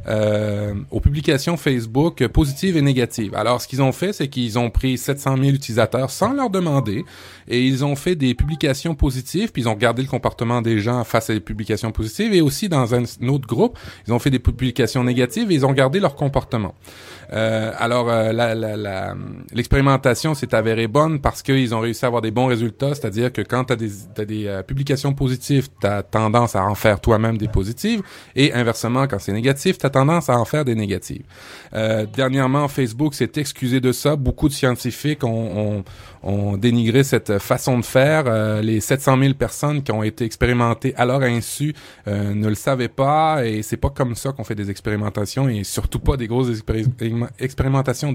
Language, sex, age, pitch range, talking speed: French, male, 30-49, 110-140 Hz, 200 wpm